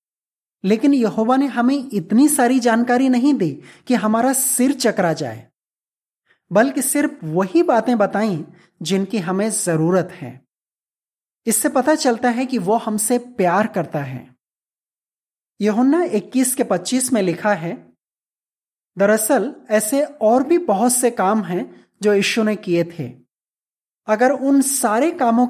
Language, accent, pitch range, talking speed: Hindi, native, 200-255 Hz, 135 wpm